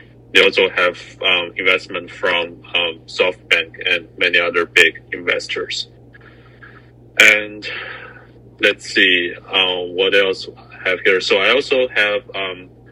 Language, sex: Chinese, male